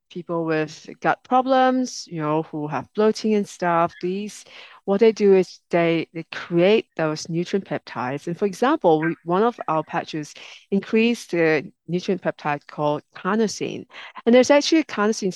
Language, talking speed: English, 160 wpm